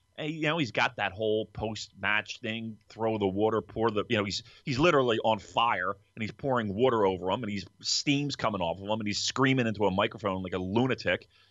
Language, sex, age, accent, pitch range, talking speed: English, male, 30-49, American, 95-115 Hz, 215 wpm